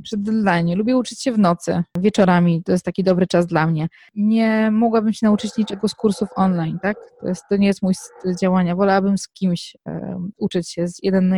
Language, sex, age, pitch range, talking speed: Polish, female, 20-39, 190-220 Hz, 205 wpm